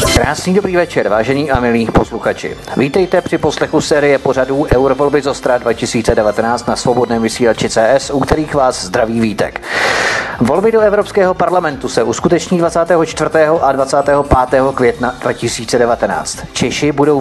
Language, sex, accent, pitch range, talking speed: Czech, male, native, 120-150 Hz, 135 wpm